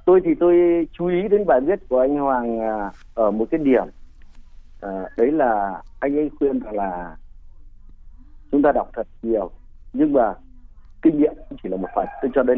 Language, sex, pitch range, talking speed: Vietnamese, male, 135-195 Hz, 180 wpm